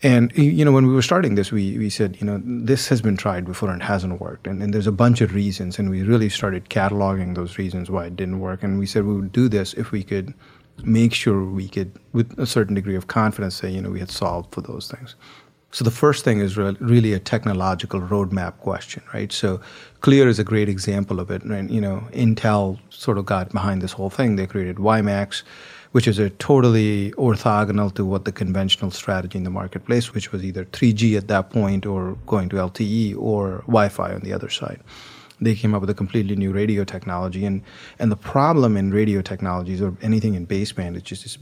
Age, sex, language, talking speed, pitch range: 30-49, male, English, 225 wpm, 95-110 Hz